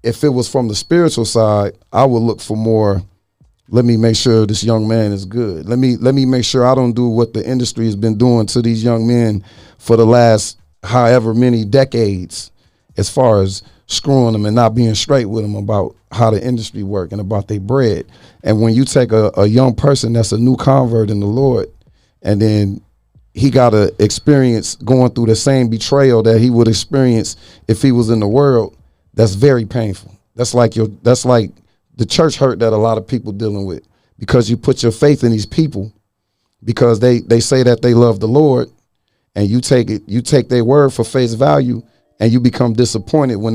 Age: 40-59